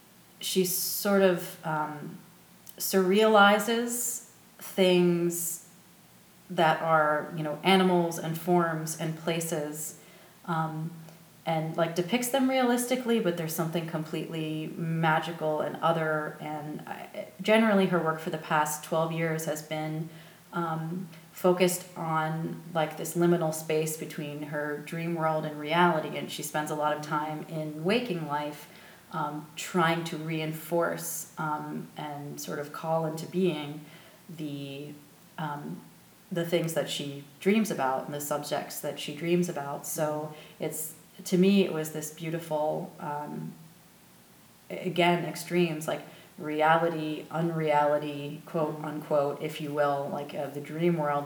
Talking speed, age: 130 wpm, 30-49